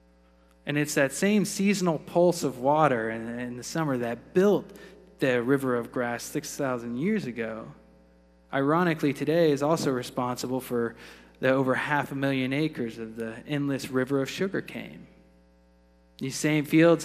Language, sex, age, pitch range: Japanese, male, 20-39, 115-150 Hz